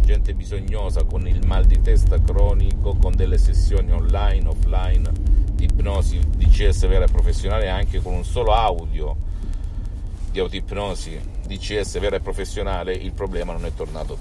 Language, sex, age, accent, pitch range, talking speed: Italian, male, 40-59, native, 80-95 Hz, 150 wpm